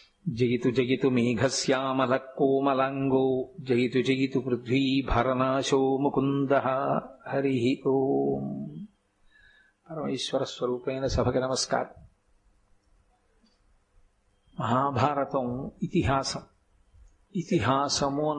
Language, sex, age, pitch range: Telugu, male, 50-69, 130-145 Hz